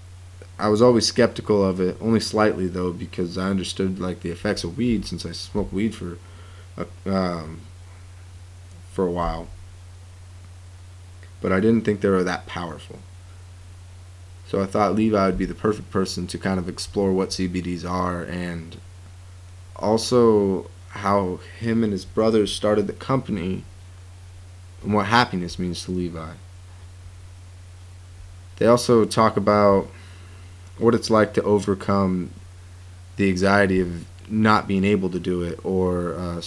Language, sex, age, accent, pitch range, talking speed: English, male, 20-39, American, 90-100 Hz, 145 wpm